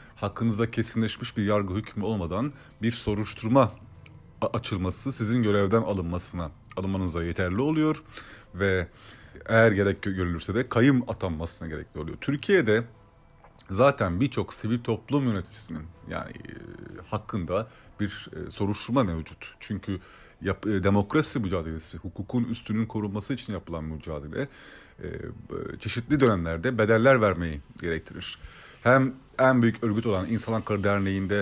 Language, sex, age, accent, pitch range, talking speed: Turkish, male, 30-49, native, 95-120 Hz, 110 wpm